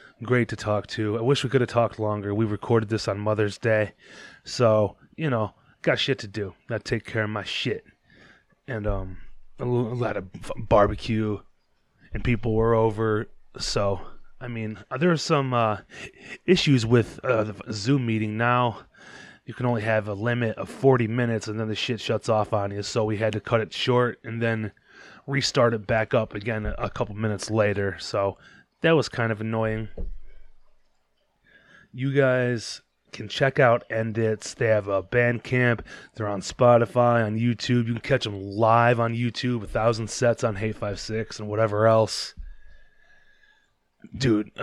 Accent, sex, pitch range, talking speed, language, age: American, male, 105-125 Hz, 175 wpm, English, 20-39